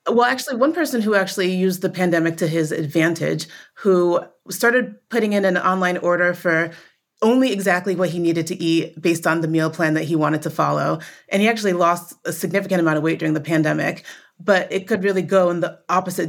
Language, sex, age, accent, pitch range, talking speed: English, female, 30-49, American, 160-185 Hz, 210 wpm